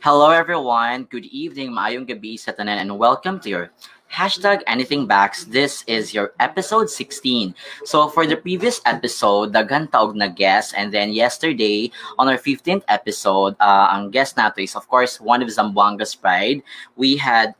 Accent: Filipino